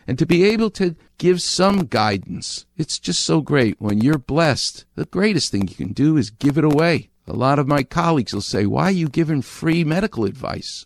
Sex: male